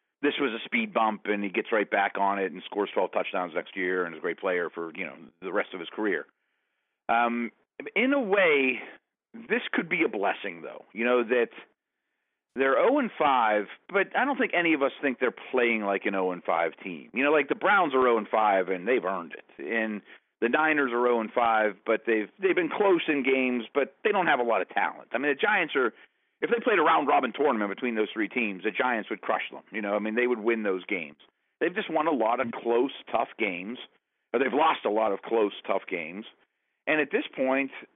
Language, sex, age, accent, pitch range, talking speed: English, male, 40-59, American, 105-145 Hz, 225 wpm